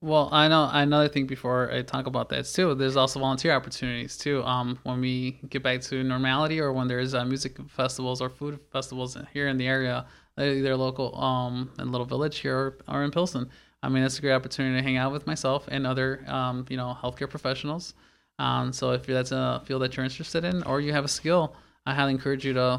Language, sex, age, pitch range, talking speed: English, male, 20-39, 130-150 Hz, 220 wpm